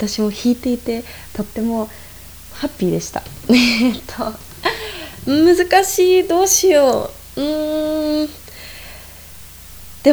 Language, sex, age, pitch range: Japanese, female, 20-39, 210-300 Hz